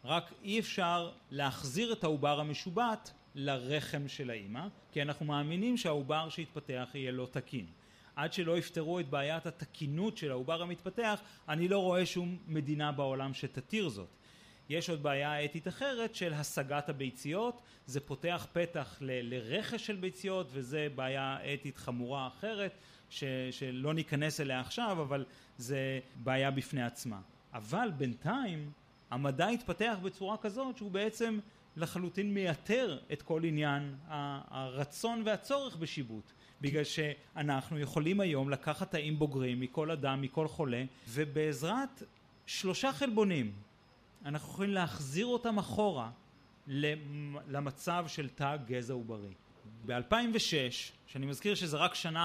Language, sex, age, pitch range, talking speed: Hebrew, male, 30-49, 135-175 Hz, 125 wpm